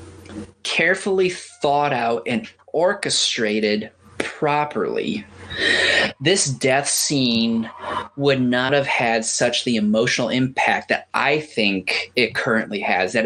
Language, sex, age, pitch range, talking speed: English, male, 20-39, 100-140 Hz, 110 wpm